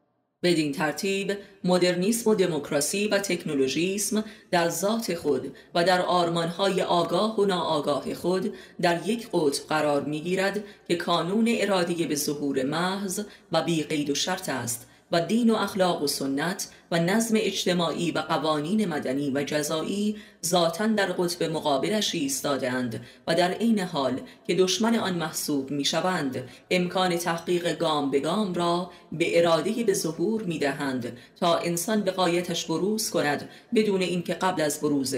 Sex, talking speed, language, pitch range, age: female, 140 wpm, Persian, 155-195 Hz, 30-49